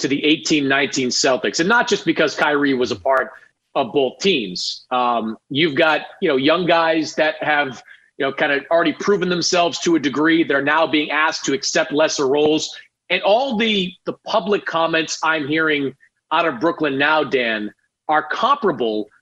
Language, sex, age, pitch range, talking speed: English, male, 30-49, 150-205 Hz, 180 wpm